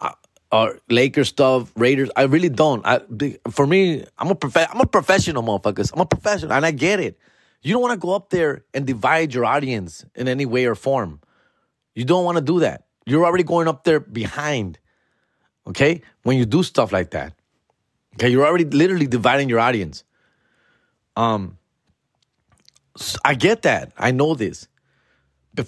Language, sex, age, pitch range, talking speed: English, male, 30-49, 120-170 Hz, 180 wpm